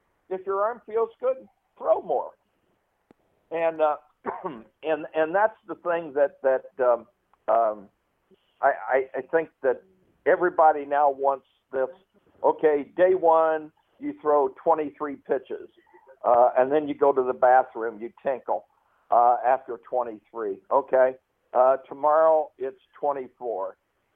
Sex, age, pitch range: male, 60-79, 135-185 Hz